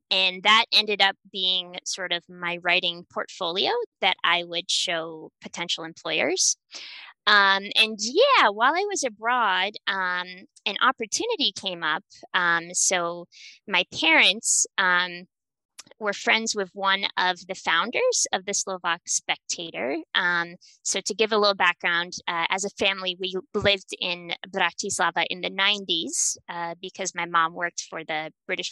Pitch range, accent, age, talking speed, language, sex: 180-220 Hz, American, 20-39, 145 wpm, English, female